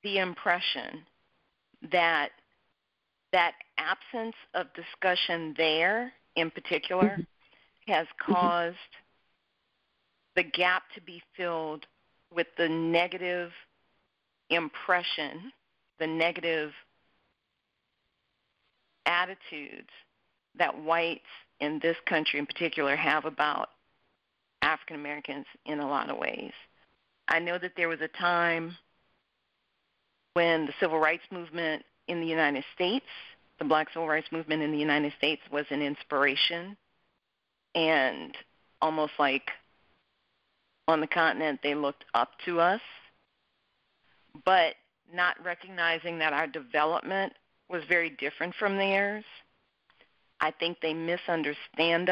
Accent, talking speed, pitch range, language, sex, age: American, 105 wpm, 155-180 Hz, English, female, 50-69